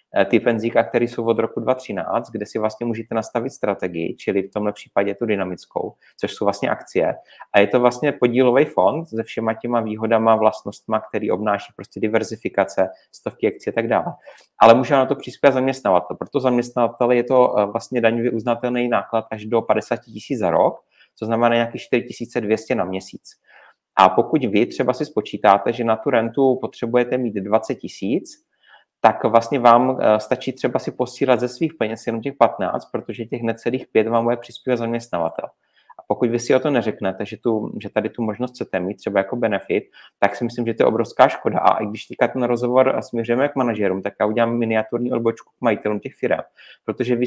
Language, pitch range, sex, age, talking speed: Czech, 110-125 Hz, male, 30-49, 190 wpm